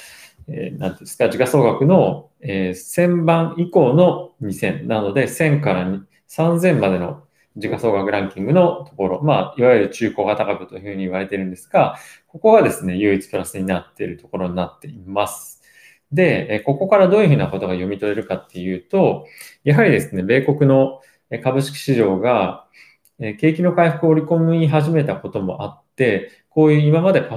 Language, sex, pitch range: Japanese, male, 100-155 Hz